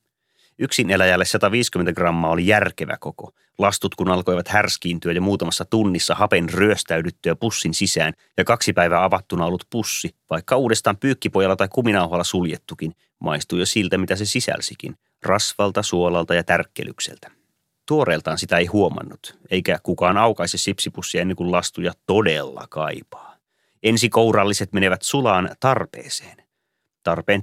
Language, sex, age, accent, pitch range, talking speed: Finnish, male, 30-49, native, 90-110 Hz, 125 wpm